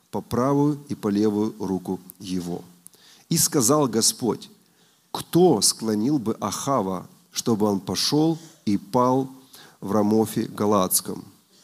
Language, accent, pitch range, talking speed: Russian, native, 105-155 Hz, 115 wpm